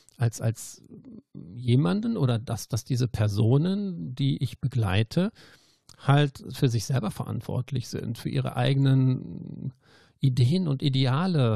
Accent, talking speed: German, 120 wpm